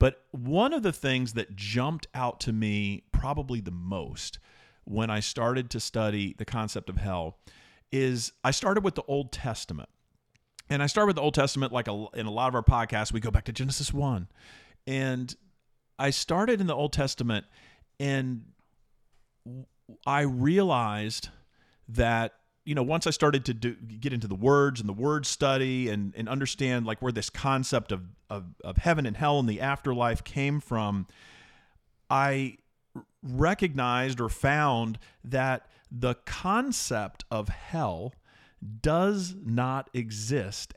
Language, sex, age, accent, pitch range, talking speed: English, male, 40-59, American, 110-140 Hz, 155 wpm